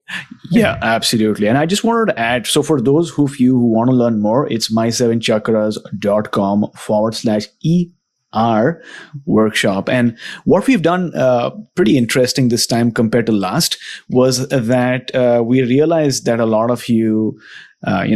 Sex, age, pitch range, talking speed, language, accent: male, 30-49, 110-135 Hz, 160 wpm, English, Indian